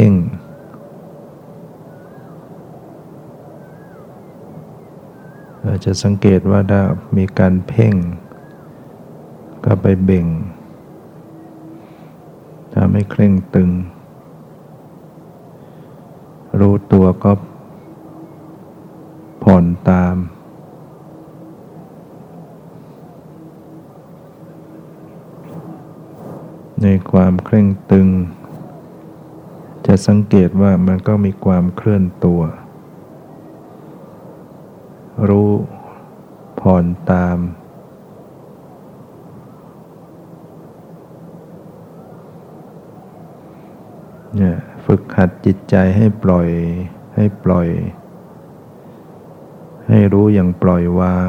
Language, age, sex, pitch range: Thai, 60-79, male, 90-105 Hz